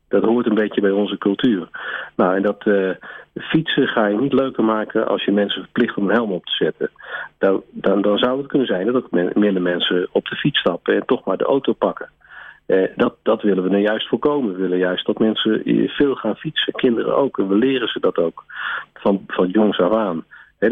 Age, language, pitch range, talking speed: 50-69, Dutch, 100-120 Hz, 230 wpm